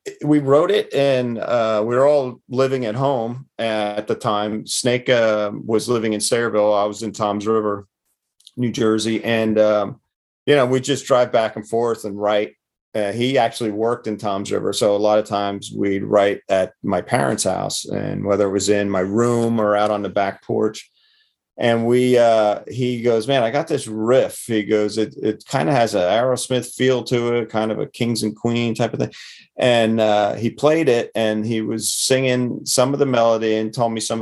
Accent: American